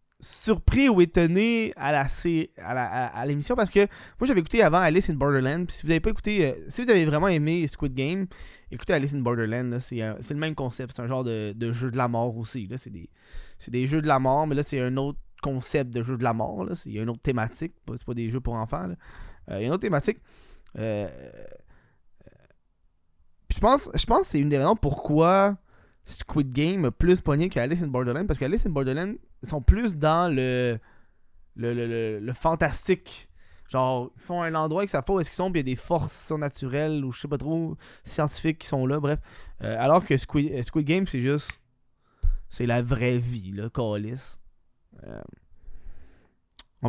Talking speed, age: 220 wpm, 20-39